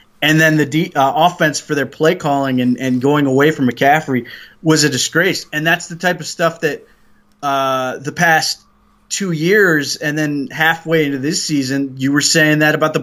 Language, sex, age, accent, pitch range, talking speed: English, male, 20-39, American, 135-160 Hz, 200 wpm